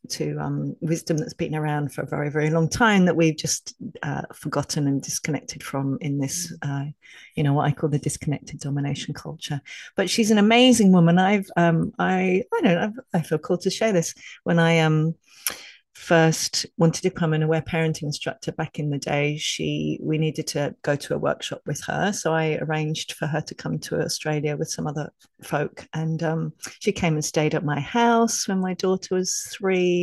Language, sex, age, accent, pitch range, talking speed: English, female, 40-59, British, 155-185 Hz, 200 wpm